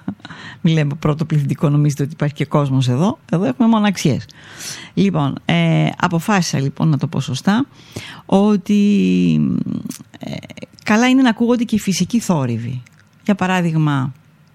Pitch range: 145-195 Hz